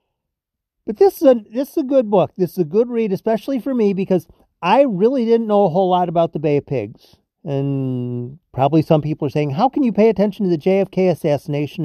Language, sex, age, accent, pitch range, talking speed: English, male, 40-59, American, 145-200 Hz, 230 wpm